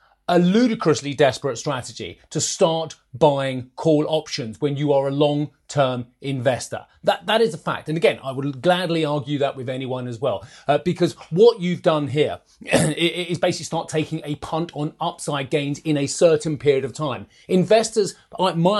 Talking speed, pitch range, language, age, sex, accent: 175 wpm, 130-170 Hz, English, 30-49, male, British